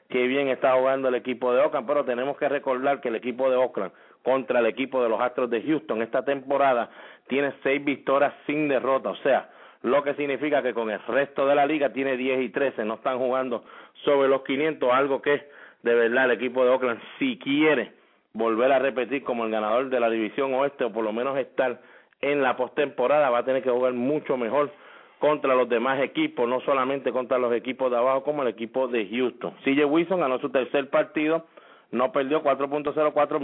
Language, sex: English, male